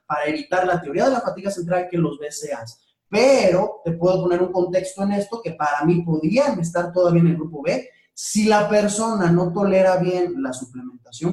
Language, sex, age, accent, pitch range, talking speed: Spanish, male, 30-49, Mexican, 165-210 Hz, 195 wpm